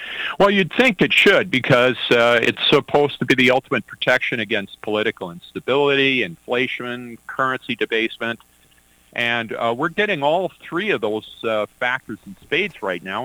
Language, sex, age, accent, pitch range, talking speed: English, male, 50-69, American, 95-125 Hz, 155 wpm